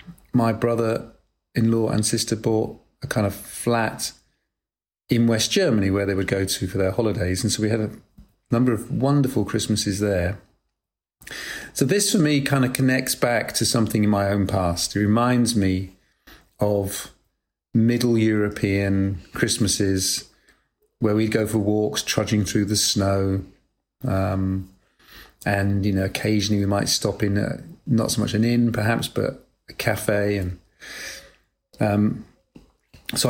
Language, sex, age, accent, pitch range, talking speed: English, male, 40-59, British, 100-120 Hz, 145 wpm